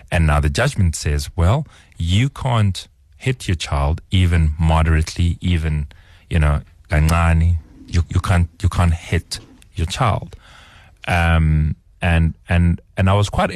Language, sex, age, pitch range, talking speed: English, male, 30-49, 80-105 Hz, 135 wpm